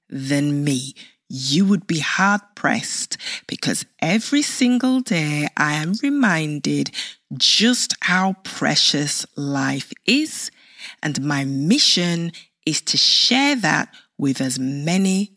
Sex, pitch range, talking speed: female, 145-240 Hz, 110 wpm